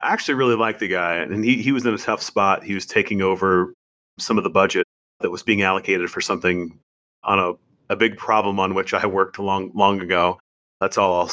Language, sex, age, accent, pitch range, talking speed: English, male, 30-49, American, 90-115 Hz, 230 wpm